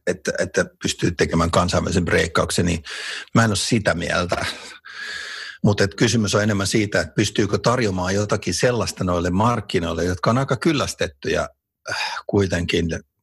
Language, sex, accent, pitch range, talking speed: Finnish, male, native, 85-105 Hz, 130 wpm